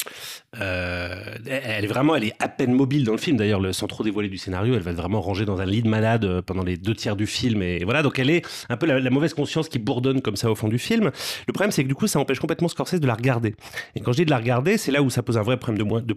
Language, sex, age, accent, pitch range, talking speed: French, male, 30-49, French, 105-140 Hz, 315 wpm